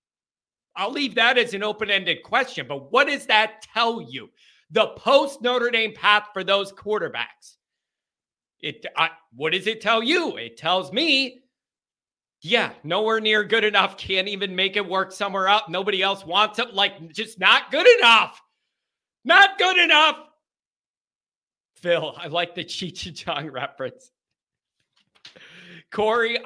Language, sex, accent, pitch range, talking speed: English, male, American, 170-230 Hz, 140 wpm